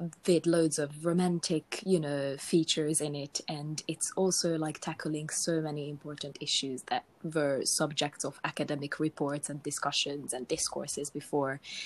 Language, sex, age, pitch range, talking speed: English, female, 20-39, 145-160 Hz, 145 wpm